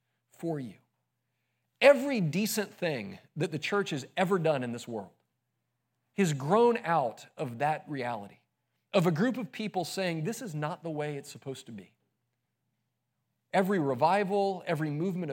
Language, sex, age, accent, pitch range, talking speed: English, male, 40-59, American, 135-190 Hz, 155 wpm